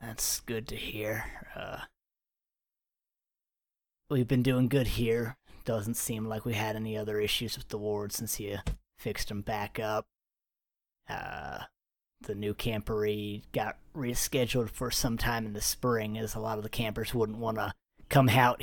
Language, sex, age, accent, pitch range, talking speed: English, male, 30-49, American, 110-130 Hz, 160 wpm